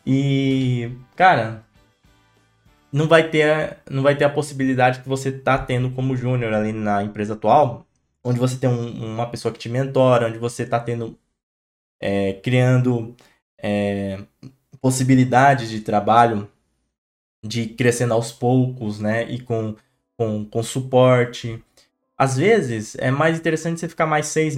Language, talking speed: Portuguese, 140 wpm